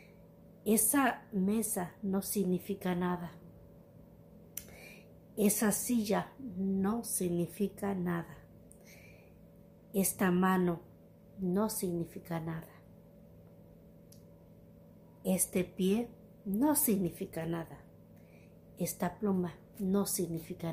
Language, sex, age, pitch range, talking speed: Spanish, female, 60-79, 175-200 Hz, 70 wpm